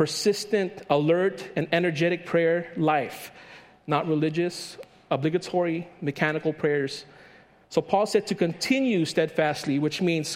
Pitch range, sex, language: 155-200 Hz, male, English